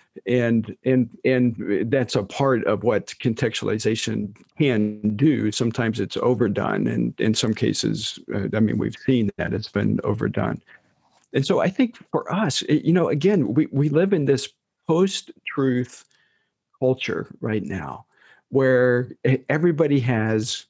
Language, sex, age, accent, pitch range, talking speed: English, male, 50-69, American, 115-140 Hz, 140 wpm